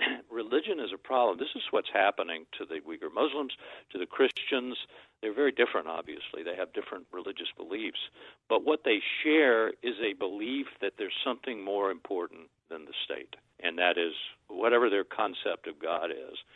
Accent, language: American, English